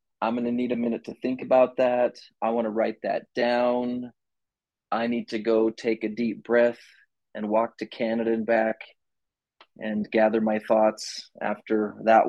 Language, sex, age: English, male, 30-49